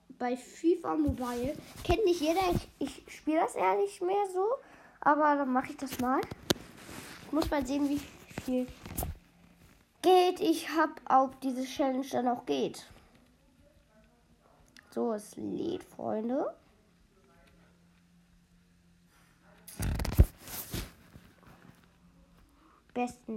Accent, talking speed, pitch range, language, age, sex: German, 100 wpm, 235-300 Hz, German, 20-39, female